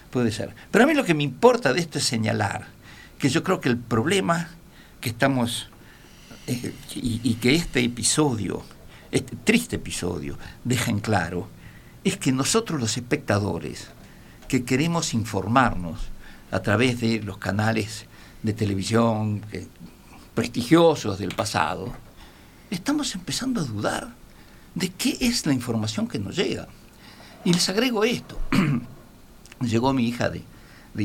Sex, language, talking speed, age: male, Spanish, 140 wpm, 60-79